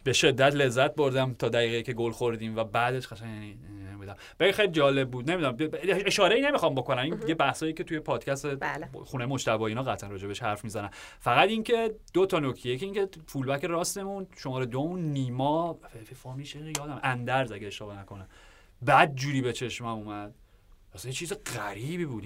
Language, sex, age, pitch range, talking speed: Persian, male, 30-49, 110-145 Hz, 165 wpm